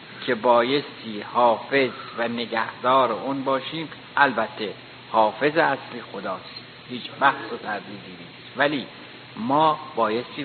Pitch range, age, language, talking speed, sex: 115-145 Hz, 60-79, Persian, 110 wpm, male